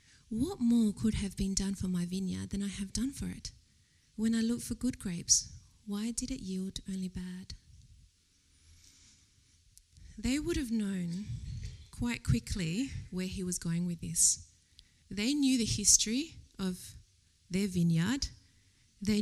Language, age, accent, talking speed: English, 30-49, Australian, 145 wpm